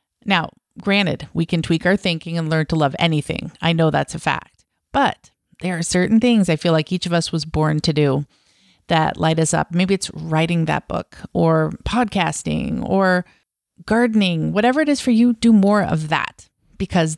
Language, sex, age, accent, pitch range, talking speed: English, female, 30-49, American, 155-195 Hz, 190 wpm